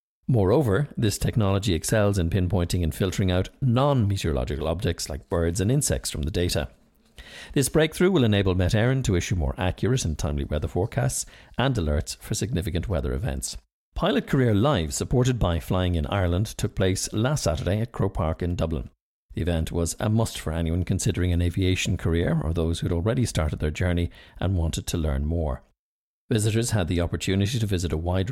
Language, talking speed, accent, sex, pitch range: English, 180 wpm, Irish, male, 85-120 Hz